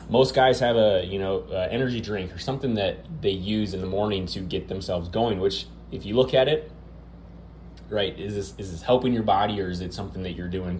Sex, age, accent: male, 20-39, American